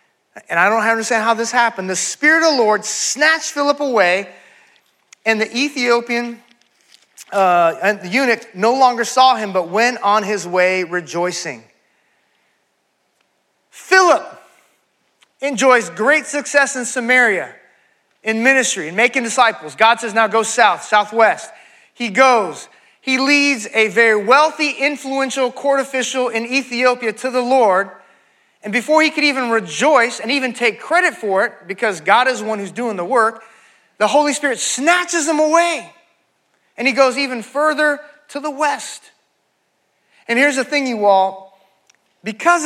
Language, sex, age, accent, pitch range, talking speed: English, male, 30-49, American, 215-280 Hz, 145 wpm